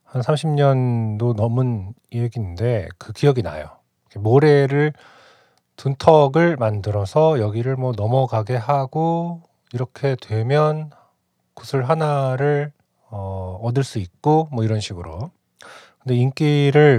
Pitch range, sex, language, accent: 110-150 Hz, male, Korean, native